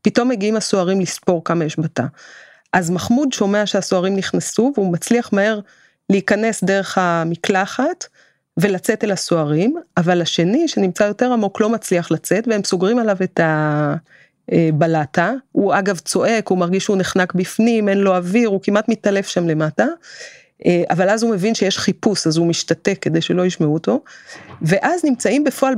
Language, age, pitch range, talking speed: Hebrew, 30-49, 180-245 Hz, 155 wpm